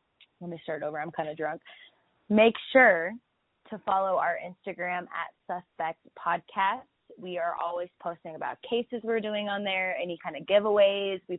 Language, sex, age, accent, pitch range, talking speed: English, female, 20-39, American, 170-200 Hz, 170 wpm